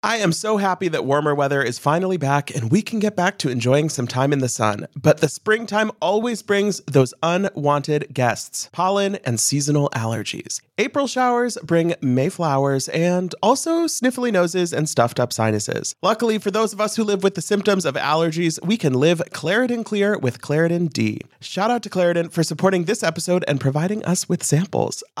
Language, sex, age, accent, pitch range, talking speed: English, male, 30-49, American, 140-195 Hz, 190 wpm